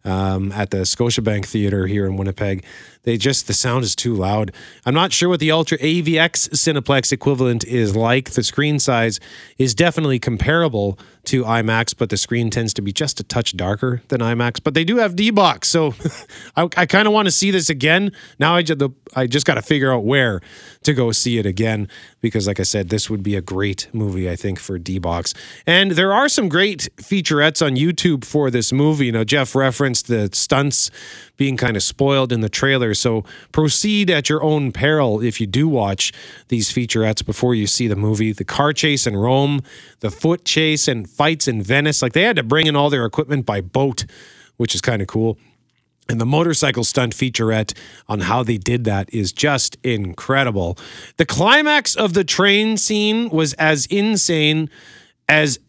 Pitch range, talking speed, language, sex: 110-155 Hz, 195 wpm, English, male